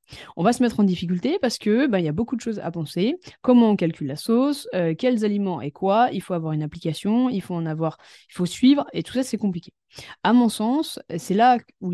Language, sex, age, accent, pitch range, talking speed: French, female, 20-39, French, 175-230 Hz, 245 wpm